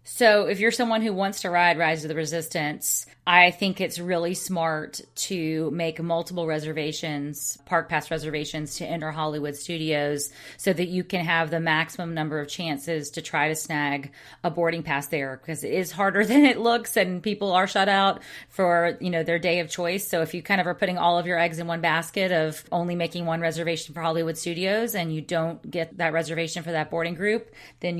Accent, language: American, English